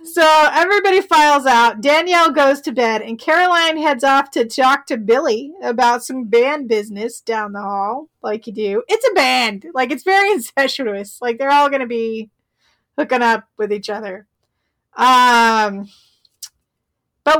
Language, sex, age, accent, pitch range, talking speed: English, female, 30-49, American, 225-295 Hz, 160 wpm